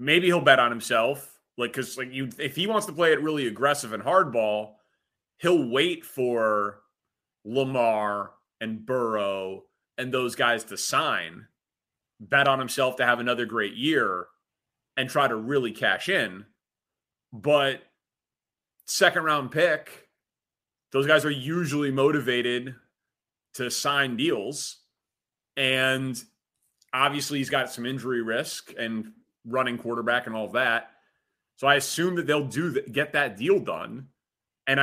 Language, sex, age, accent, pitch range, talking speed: English, male, 30-49, American, 115-140 Hz, 140 wpm